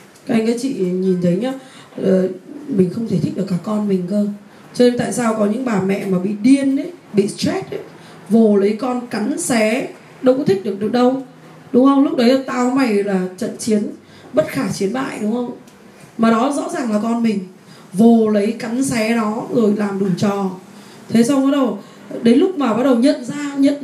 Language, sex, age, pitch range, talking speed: Vietnamese, female, 20-39, 195-255 Hz, 215 wpm